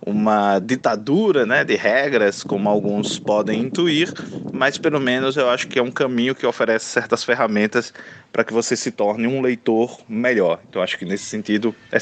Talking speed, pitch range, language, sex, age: 180 wpm, 105-125 Hz, Portuguese, male, 20-39